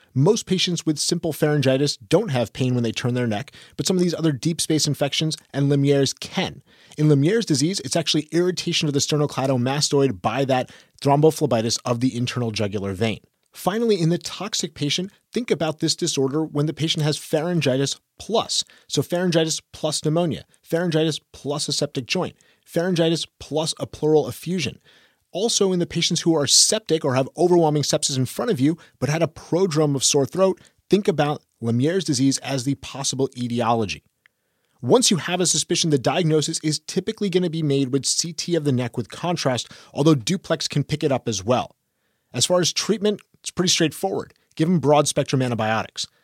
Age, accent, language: 30-49, American, English